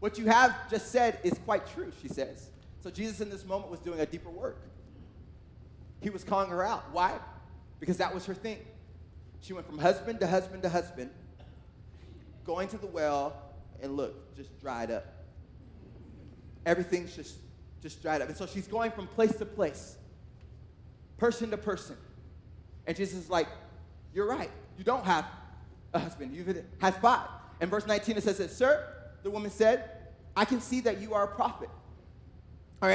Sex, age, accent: male, 20-39, American